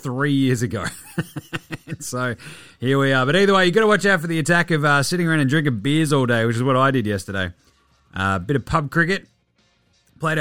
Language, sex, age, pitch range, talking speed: English, male, 30-49, 125-170 Hz, 230 wpm